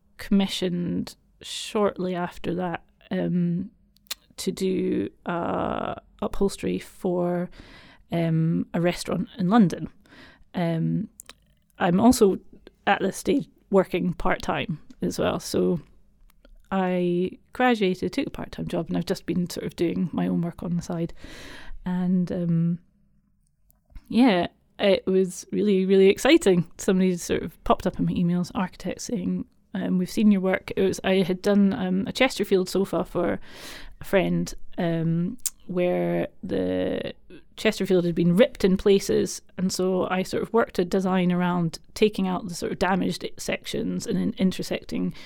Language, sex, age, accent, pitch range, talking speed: English, female, 30-49, British, 175-200 Hz, 145 wpm